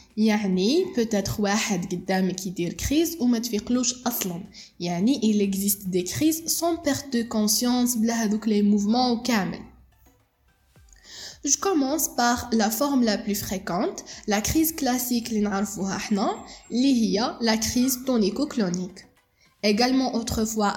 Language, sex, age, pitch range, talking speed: Arabic, female, 10-29, 210-265 Hz, 145 wpm